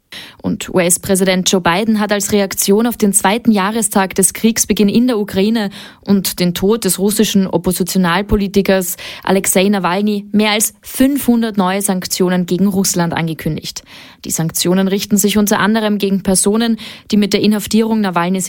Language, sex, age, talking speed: German, female, 20-39, 145 wpm